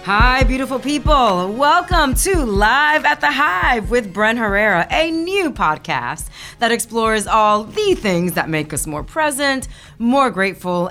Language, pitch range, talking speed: English, 150-225 Hz, 150 wpm